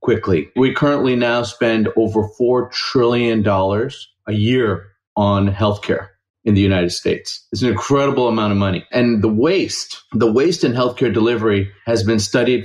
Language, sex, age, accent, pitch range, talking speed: English, male, 40-59, American, 105-125 Hz, 155 wpm